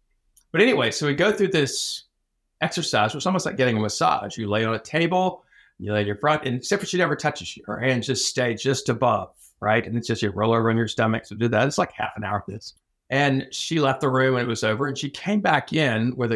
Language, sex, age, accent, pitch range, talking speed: English, male, 60-79, American, 105-140 Hz, 270 wpm